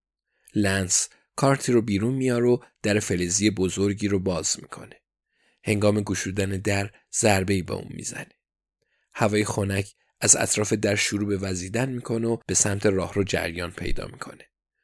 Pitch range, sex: 100-120 Hz, male